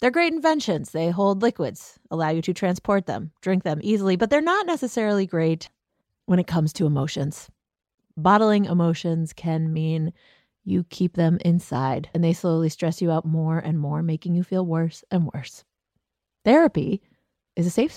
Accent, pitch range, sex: American, 165-225 Hz, female